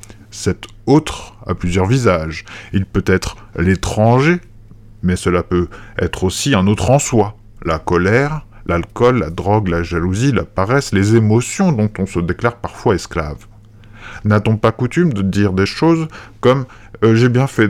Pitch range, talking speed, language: 95-120 Hz, 160 wpm, French